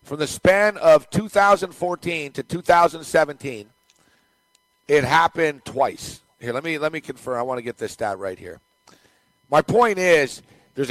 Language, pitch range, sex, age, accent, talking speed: English, 135-170 Hz, male, 50-69, American, 155 wpm